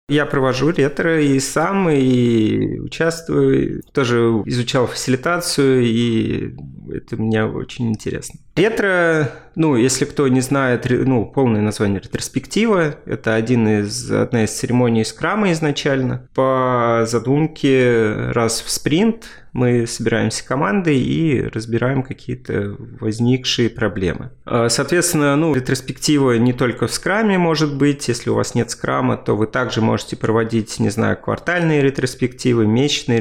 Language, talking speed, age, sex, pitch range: Russian, 130 wpm, 30-49, male, 115-140 Hz